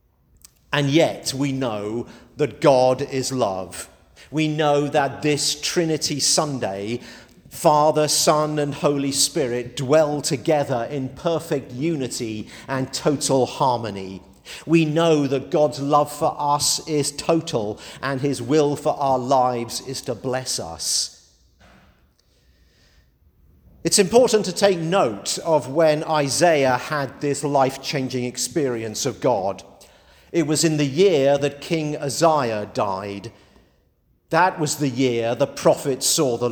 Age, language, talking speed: 50-69, English, 125 wpm